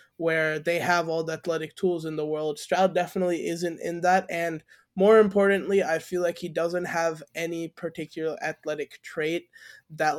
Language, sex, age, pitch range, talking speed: English, male, 20-39, 155-180 Hz, 170 wpm